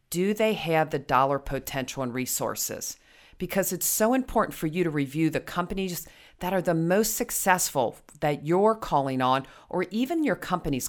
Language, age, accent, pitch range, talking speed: English, 40-59, American, 140-180 Hz, 170 wpm